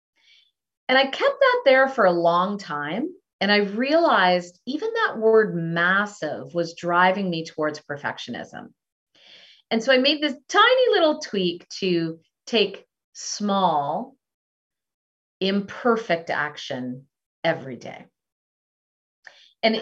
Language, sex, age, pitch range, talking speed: English, female, 40-59, 160-230 Hz, 110 wpm